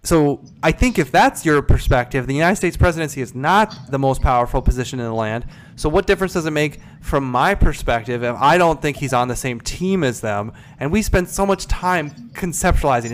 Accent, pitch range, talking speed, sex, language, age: American, 130-170 Hz, 215 wpm, male, English, 20-39